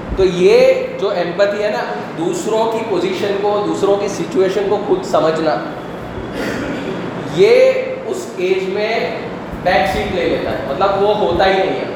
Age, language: 20-39, Urdu